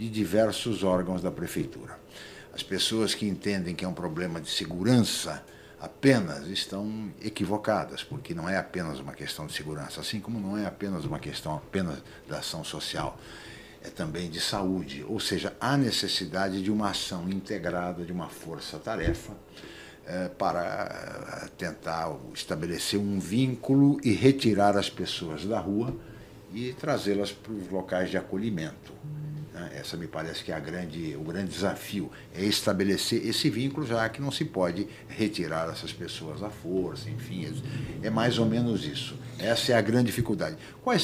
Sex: male